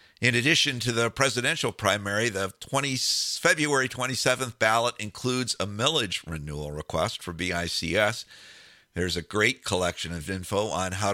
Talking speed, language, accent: 135 wpm, English, American